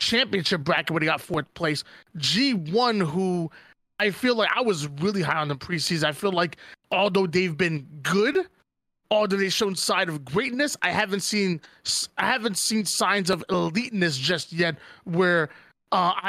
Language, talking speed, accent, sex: English, 165 wpm, American, male